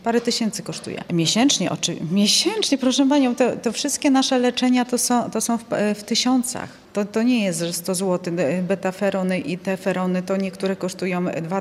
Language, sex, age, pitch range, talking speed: Polish, female, 30-49, 180-210 Hz, 170 wpm